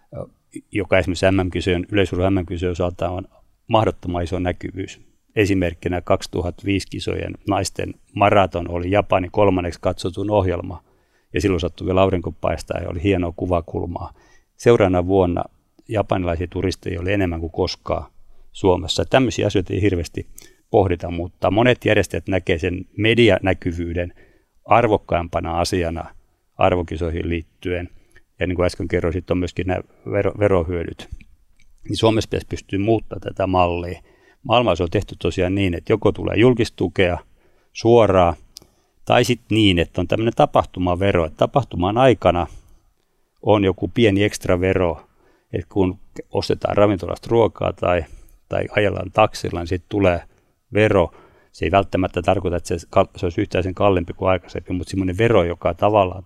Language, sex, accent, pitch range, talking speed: Finnish, male, native, 85-100 Hz, 135 wpm